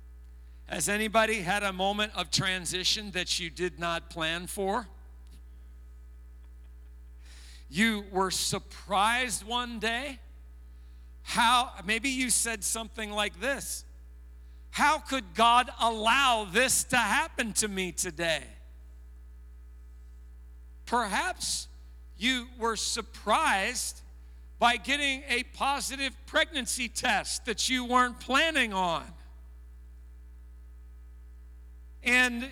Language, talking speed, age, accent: English, 95 wpm, 50-69, American